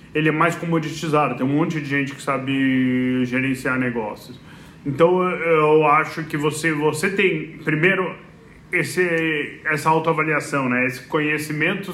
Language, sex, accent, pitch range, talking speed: Portuguese, male, Brazilian, 145-165 Hz, 135 wpm